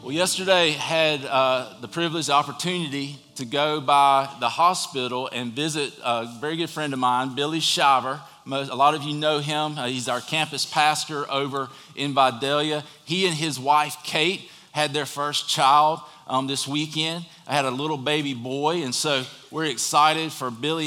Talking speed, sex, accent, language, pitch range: 180 wpm, male, American, English, 130-155 Hz